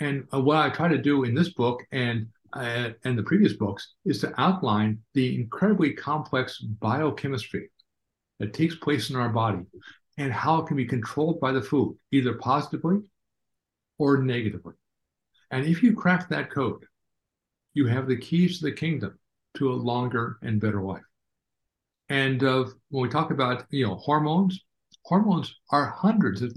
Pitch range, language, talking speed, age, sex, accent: 115-155 Hz, Italian, 165 wpm, 60-79, male, American